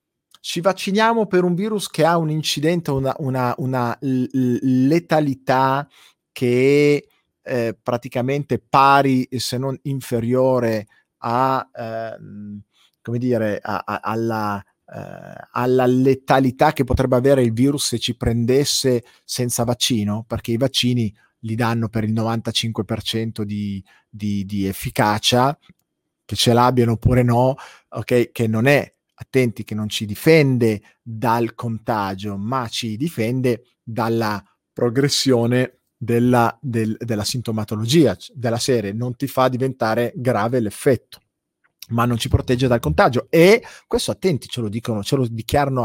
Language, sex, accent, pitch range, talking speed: Italian, male, native, 115-135 Hz, 120 wpm